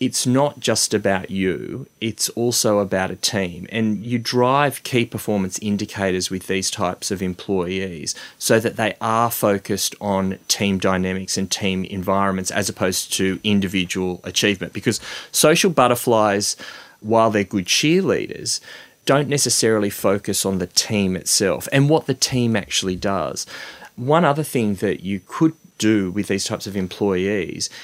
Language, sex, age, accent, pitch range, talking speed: English, male, 30-49, Australian, 95-115 Hz, 150 wpm